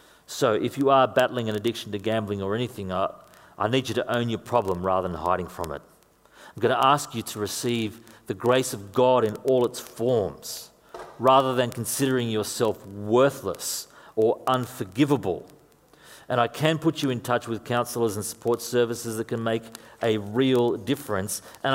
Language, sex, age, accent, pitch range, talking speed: English, male, 40-59, Australian, 110-150 Hz, 180 wpm